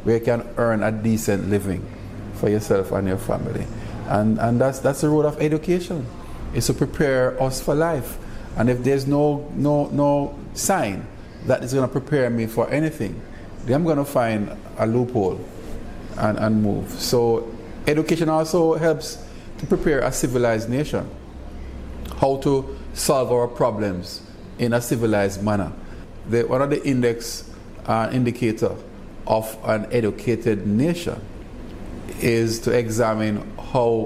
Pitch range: 105-130 Hz